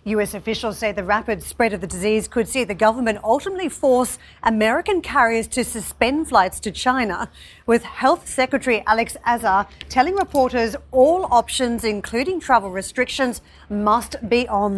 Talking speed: 150 wpm